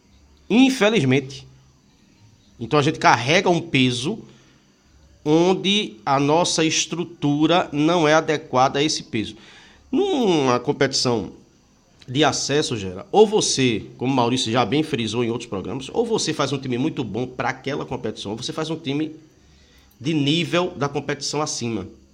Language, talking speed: Portuguese, 140 wpm